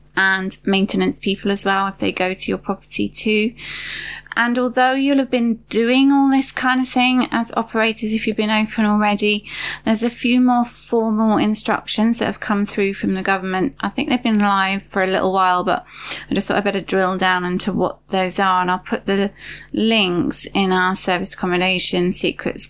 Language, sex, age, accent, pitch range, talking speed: English, female, 30-49, British, 190-225 Hz, 195 wpm